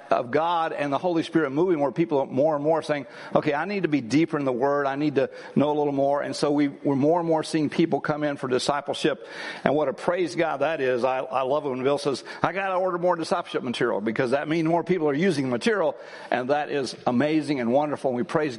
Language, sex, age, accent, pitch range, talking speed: English, male, 60-79, American, 150-205 Hz, 260 wpm